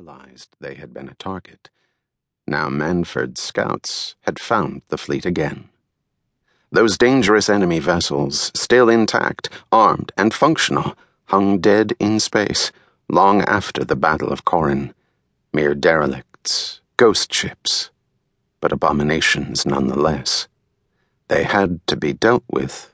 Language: English